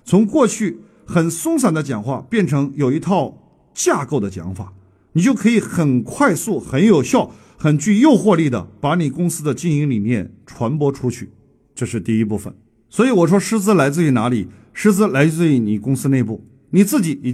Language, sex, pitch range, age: Chinese, male, 135-210 Hz, 50-69